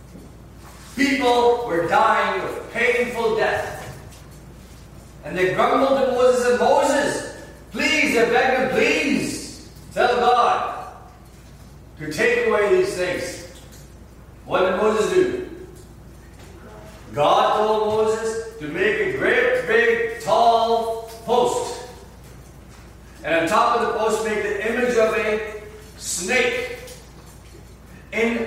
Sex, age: male, 40-59